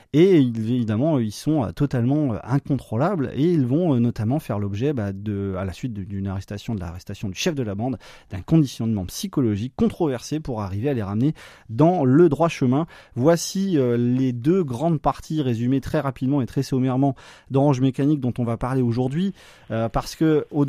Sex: male